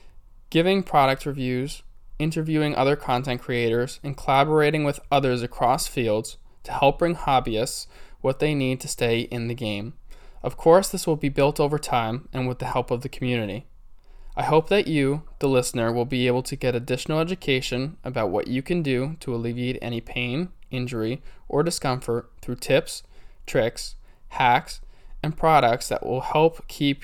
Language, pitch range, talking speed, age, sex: English, 120-140 Hz, 165 wpm, 20-39, male